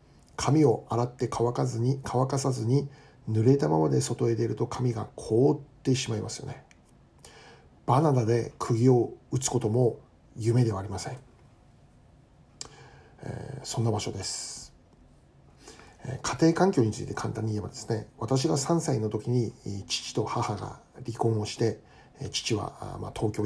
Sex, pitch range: male, 110-130 Hz